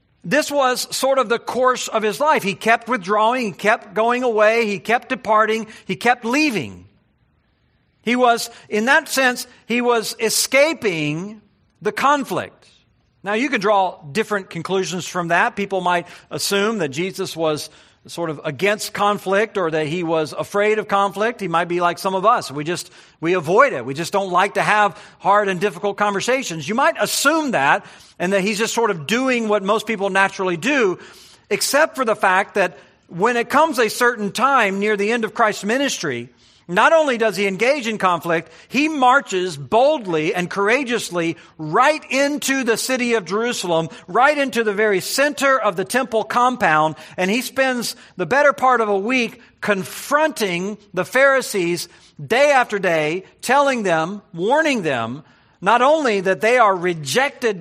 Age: 50-69